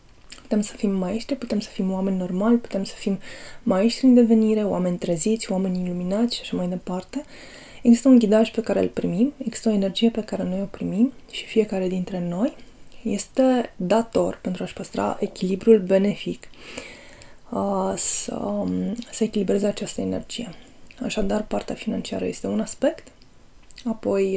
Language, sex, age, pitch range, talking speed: Romanian, female, 20-39, 190-230 Hz, 155 wpm